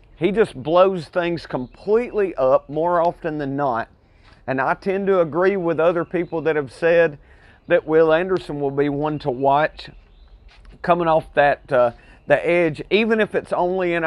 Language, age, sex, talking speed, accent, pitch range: English, 40-59, male, 170 wpm, American, 135-175 Hz